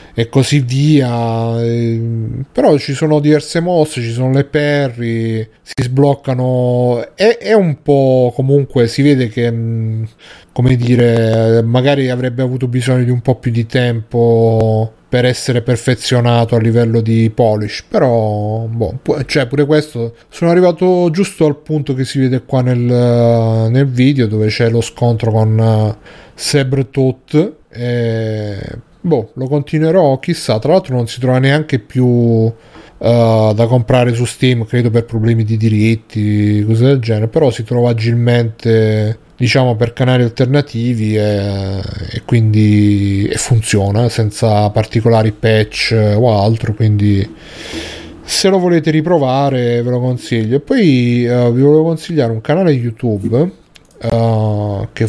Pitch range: 115-135 Hz